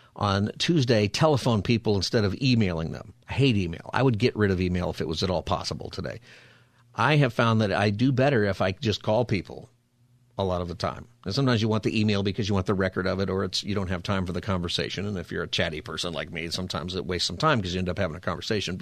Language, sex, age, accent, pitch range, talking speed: English, male, 50-69, American, 100-140 Hz, 265 wpm